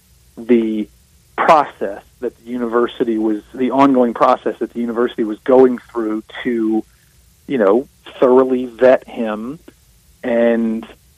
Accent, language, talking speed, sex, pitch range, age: American, English, 120 wpm, male, 110-130 Hz, 30-49